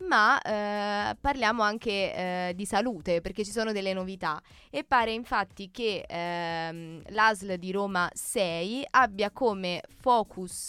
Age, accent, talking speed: 20-39, native, 135 wpm